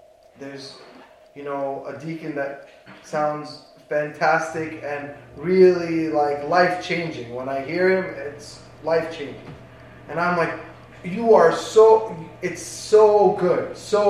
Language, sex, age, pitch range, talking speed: English, male, 20-39, 150-220 Hz, 120 wpm